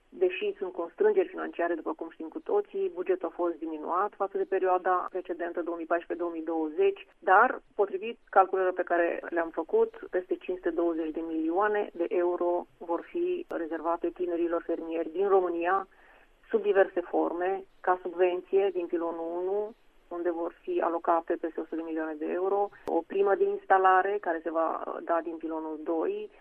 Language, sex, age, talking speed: Romanian, female, 30-49, 150 wpm